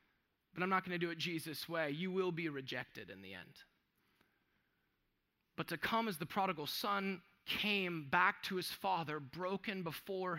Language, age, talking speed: English, 20-39, 170 wpm